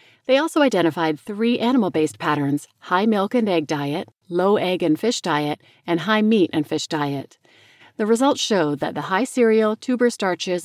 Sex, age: female, 40-59